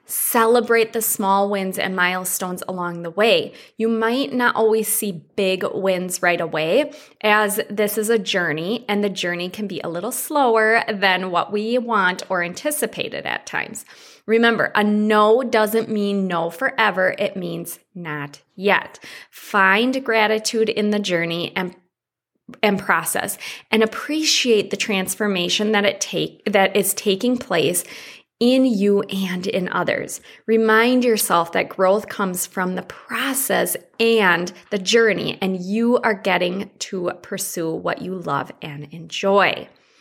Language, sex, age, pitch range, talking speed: English, female, 20-39, 185-225 Hz, 145 wpm